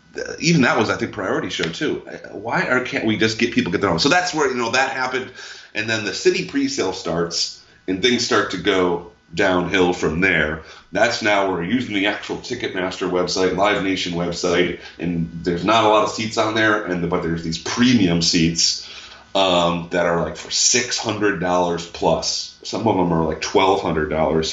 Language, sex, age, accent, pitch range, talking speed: English, male, 30-49, American, 85-100 Hz, 205 wpm